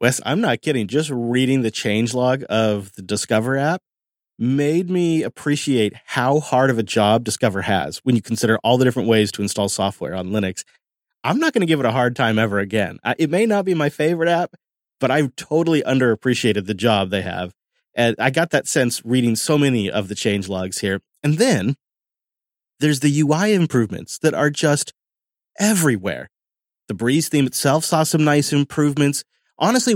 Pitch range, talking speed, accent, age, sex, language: 110-150 Hz, 180 wpm, American, 30-49, male, English